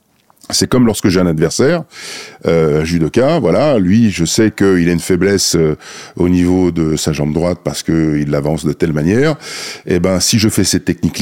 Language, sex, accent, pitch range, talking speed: French, male, French, 90-125 Hz, 205 wpm